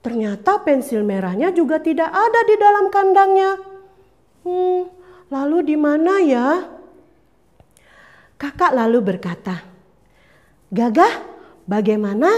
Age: 40-59